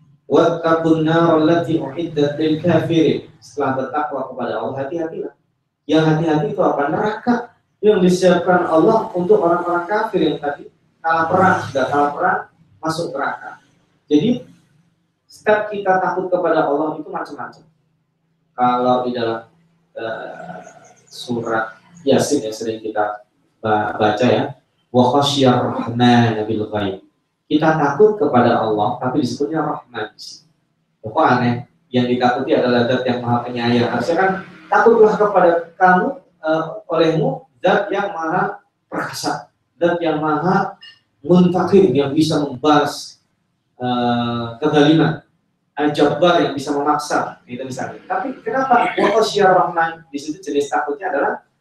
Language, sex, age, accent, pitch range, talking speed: Indonesian, male, 30-49, native, 130-170 Hz, 110 wpm